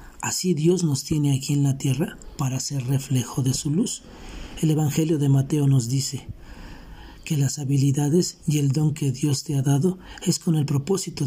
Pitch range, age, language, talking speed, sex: 135-165 Hz, 50-69, Spanish, 185 wpm, male